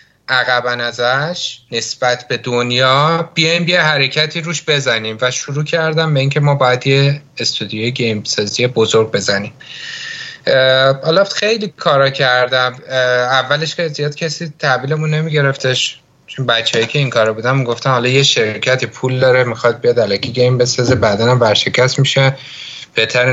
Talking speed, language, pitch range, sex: 140 wpm, Persian, 125-150 Hz, male